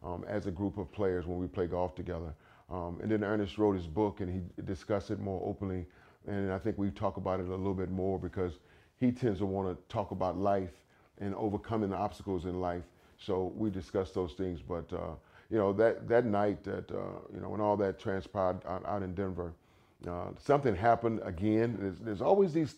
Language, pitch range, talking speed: English, 90-105 Hz, 215 wpm